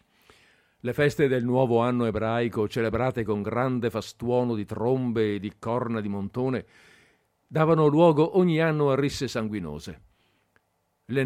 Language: Italian